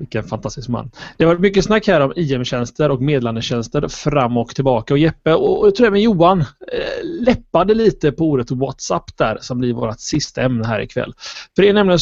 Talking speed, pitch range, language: 195 wpm, 125-175 Hz, Swedish